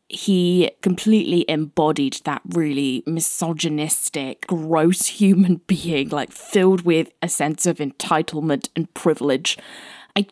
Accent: British